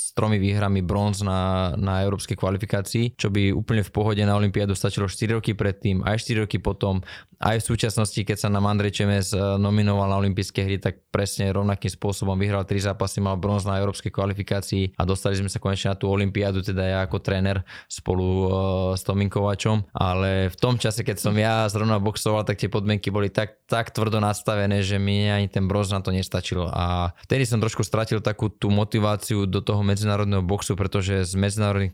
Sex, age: male, 20-39